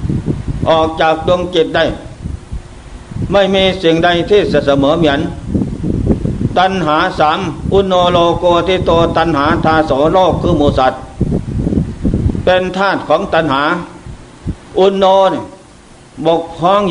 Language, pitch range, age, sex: Thai, 150-180 Hz, 60-79, male